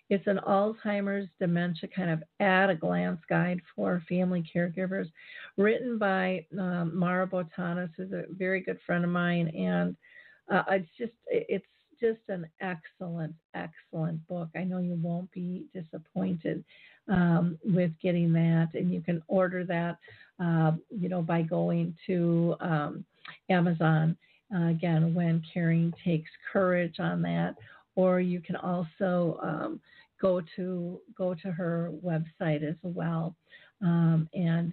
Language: English